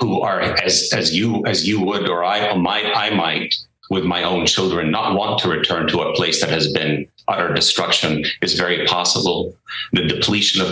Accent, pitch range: American, 85-115 Hz